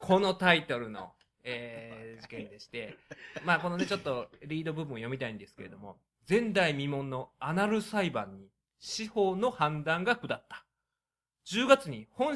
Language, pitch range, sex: Japanese, 140-210 Hz, male